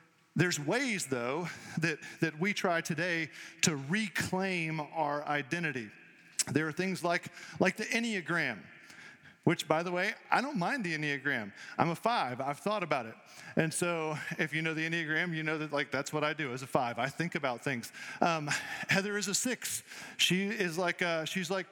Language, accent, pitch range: English, American, 155-195 Hz